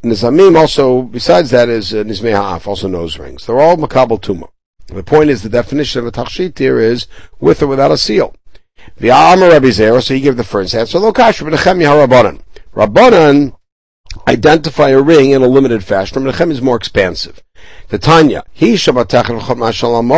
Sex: male